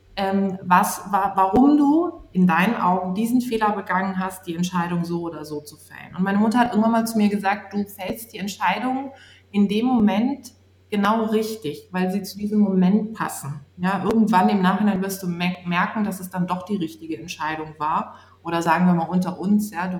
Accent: German